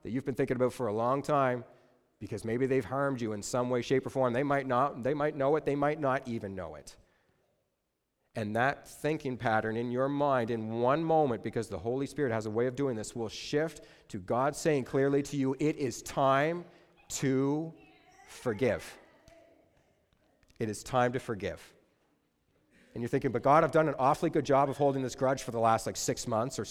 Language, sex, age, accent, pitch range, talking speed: English, male, 40-59, American, 115-145 Hz, 210 wpm